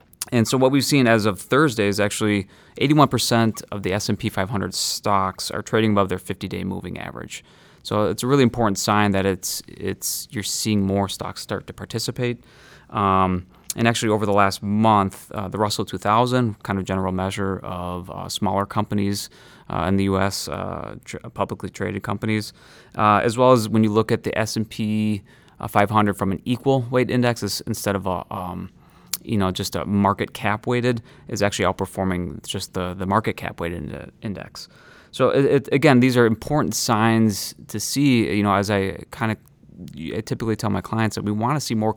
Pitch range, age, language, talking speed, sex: 95-115 Hz, 20-39, English, 185 wpm, male